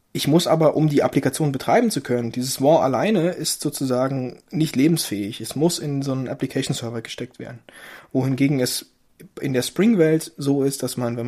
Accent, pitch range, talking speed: German, 125-160 Hz, 180 wpm